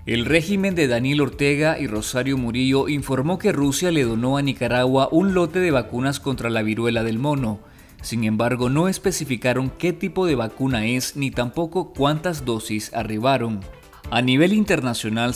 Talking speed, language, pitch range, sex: 160 wpm, Spanish, 115-150 Hz, male